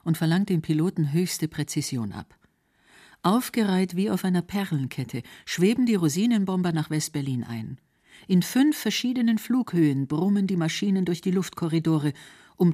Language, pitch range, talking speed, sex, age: German, 150-195 Hz, 135 wpm, female, 50-69